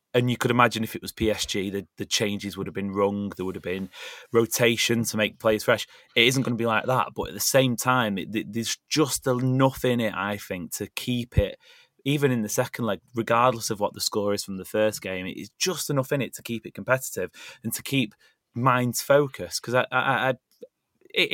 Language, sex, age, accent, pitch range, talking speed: English, male, 30-49, British, 105-130 Hz, 235 wpm